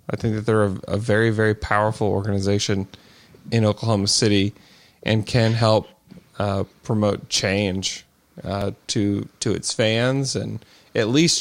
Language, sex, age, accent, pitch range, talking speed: English, male, 20-39, American, 95-115 Hz, 140 wpm